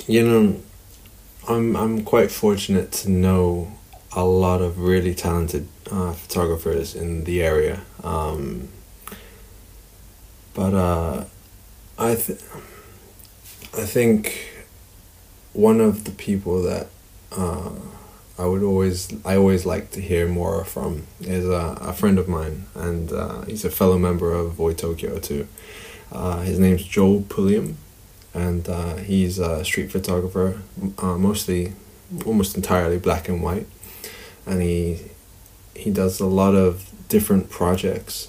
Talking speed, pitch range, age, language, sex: 130 wpm, 90-100 Hz, 20-39, English, male